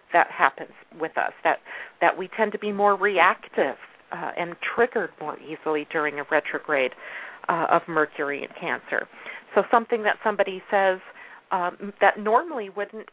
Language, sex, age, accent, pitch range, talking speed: English, female, 40-59, American, 160-205 Hz, 155 wpm